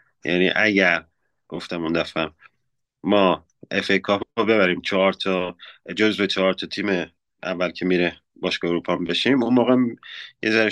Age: 30-49